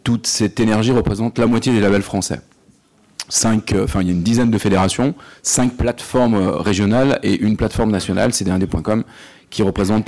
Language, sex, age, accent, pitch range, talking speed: French, male, 40-59, French, 100-120 Hz, 180 wpm